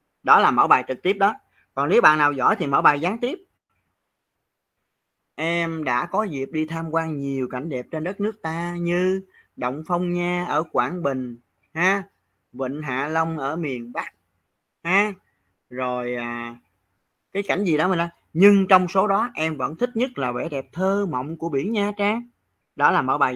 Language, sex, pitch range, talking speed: Vietnamese, male, 130-190 Hz, 195 wpm